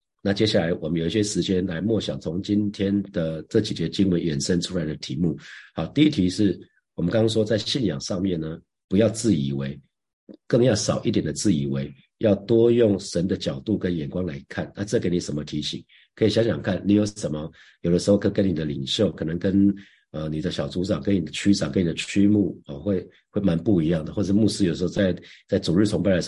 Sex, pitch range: male, 85-105 Hz